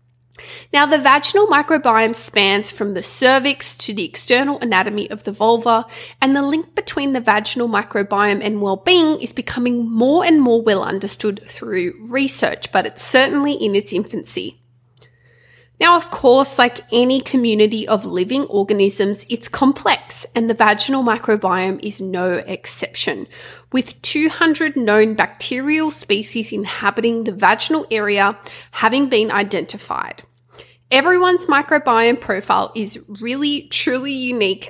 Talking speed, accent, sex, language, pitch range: 130 wpm, Australian, female, English, 205-275 Hz